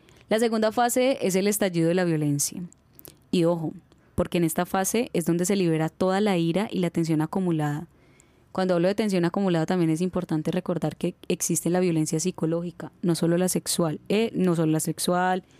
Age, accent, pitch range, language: 10-29, Colombian, 170-200 Hz, Spanish